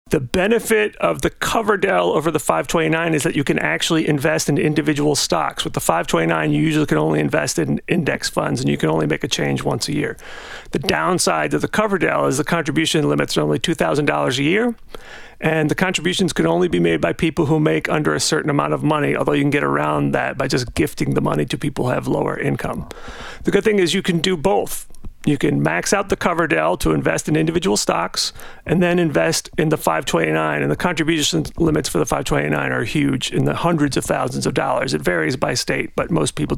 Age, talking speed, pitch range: 40-59, 220 wpm, 145-180 Hz